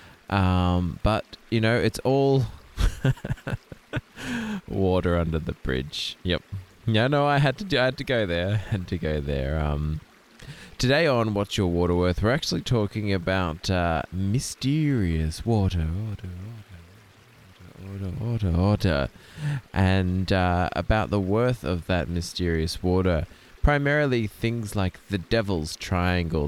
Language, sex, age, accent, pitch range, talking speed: English, male, 20-39, Australian, 85-110 Hz, 145 wpm